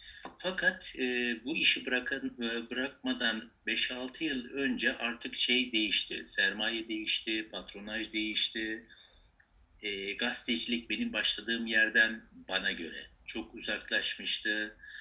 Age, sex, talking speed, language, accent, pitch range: 60-79, male, 100 wpm, Turkish, native, 110-160 Hz